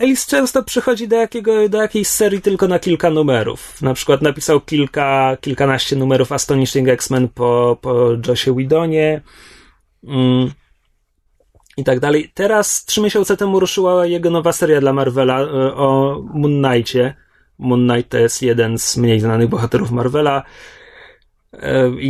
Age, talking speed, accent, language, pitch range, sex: 30-49, 140 wpm, native, Polish, 125-170 Hz, male